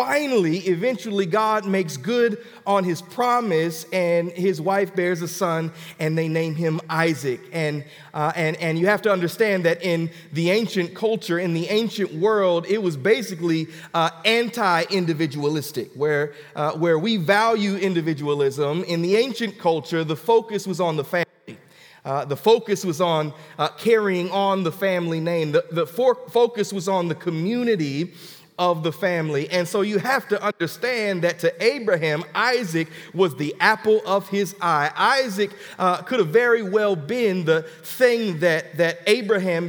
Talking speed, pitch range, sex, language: 165 wpm, 165-210 Hz, male, English